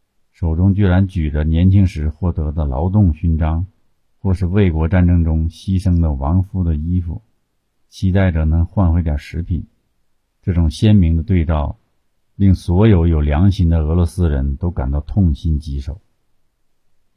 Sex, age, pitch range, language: male, 50-69, 80-100 Hz, Chinese